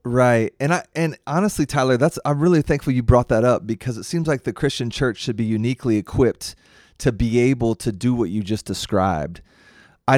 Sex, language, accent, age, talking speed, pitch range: male, English, American, 30-49, 205 wpm, 110-125 Hz